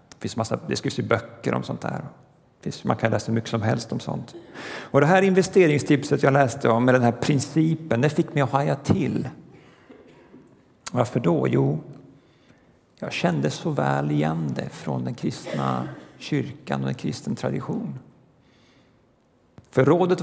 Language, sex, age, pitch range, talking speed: Swedish, male, 50-69, 115-150 Hz, 155 wpm